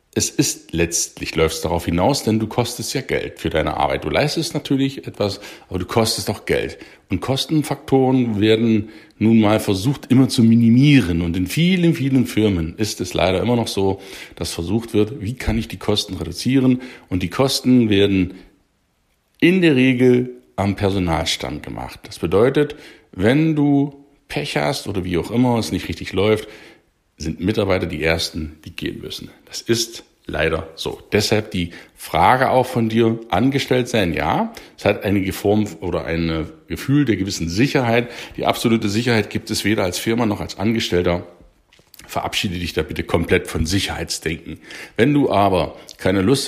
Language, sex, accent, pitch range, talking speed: German, male, German, 90-120 Hz, 170 wpm